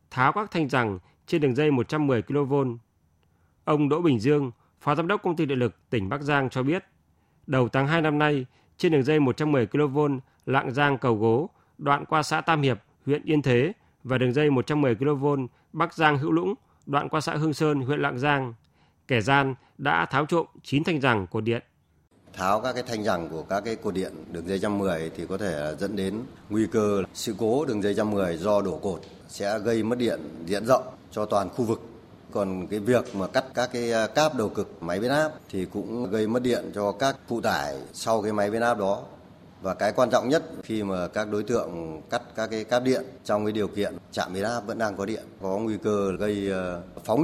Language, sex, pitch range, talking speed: Vietnamese, male, 100-145 Hz, 220 wpm